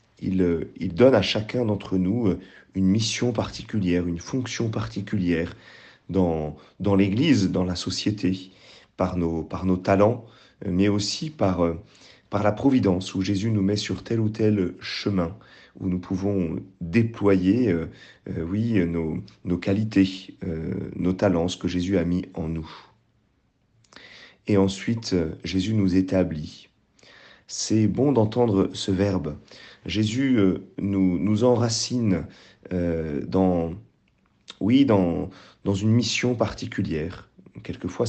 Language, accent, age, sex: French, French, 40-59, male